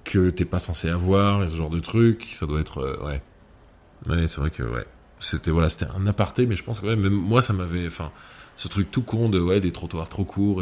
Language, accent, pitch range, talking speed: French, French, 80-95 Hz, 255 wpm